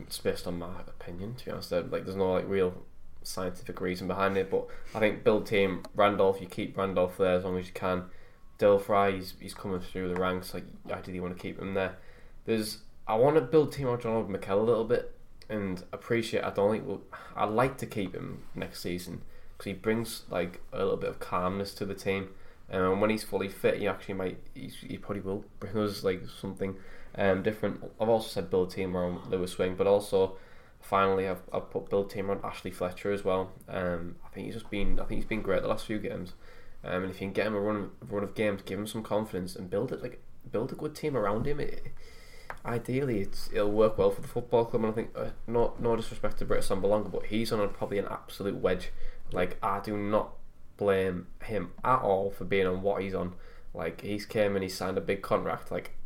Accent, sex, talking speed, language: British, male, 235 wpm, English